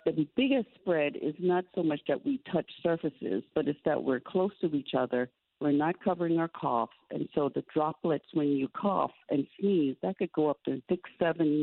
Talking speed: 205 wpm